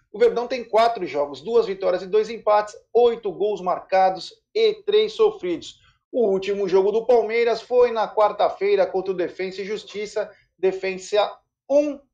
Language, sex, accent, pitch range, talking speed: Portuguese, male, Brazilian, 190-285 Hz, 155 wpm